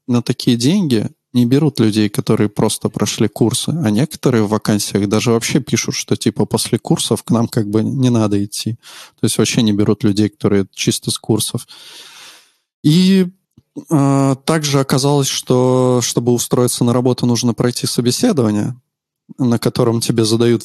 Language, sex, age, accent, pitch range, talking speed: Russian, male, 20-39, native, 110-140 Hz, 155 wpm